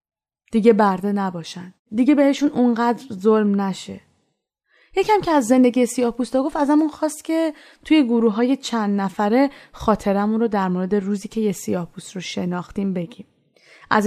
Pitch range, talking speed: 205-270 Hz, 145 wpm